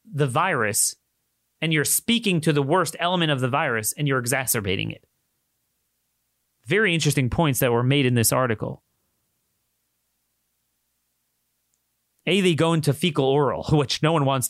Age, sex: 30-49, male